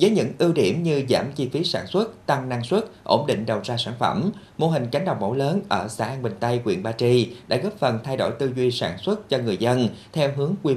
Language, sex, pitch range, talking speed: Vietnamese, male, 110-150 Hz, 270 wpm